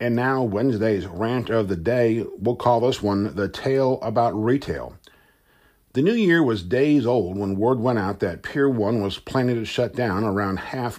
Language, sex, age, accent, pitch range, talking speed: English, male, 50-69, American, 100-125 Hz, 190 wpm